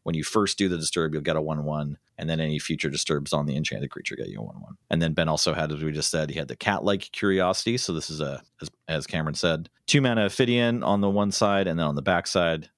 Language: English